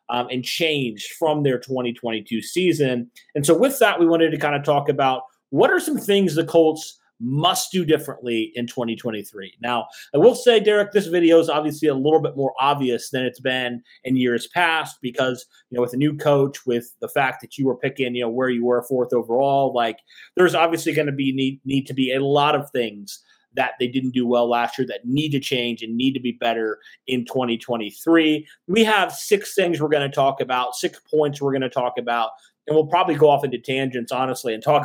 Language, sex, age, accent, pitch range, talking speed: English, male, 30-49, American, 125-165 Hz, 220 wpm